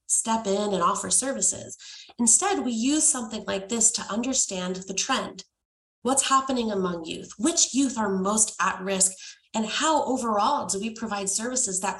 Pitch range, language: 195-250 Hz, English